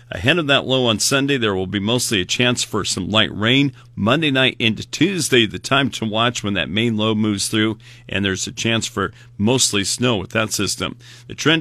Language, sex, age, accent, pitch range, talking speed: English, male, 50-69, American, 105-125 Hz, 215 wpm